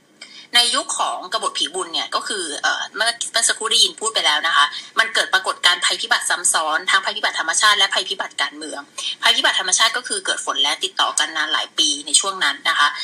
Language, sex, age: Thai, female, 20-39